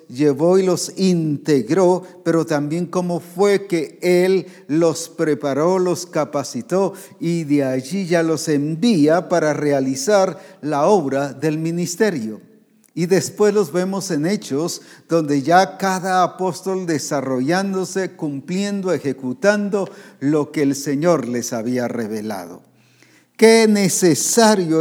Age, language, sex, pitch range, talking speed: 50-69, English, male, 150-190 Hz, 115 wpm